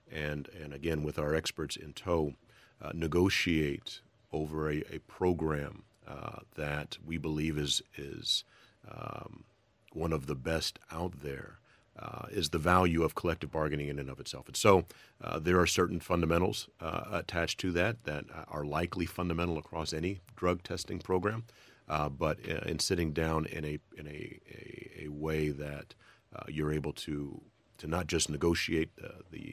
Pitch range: 75-90 Hz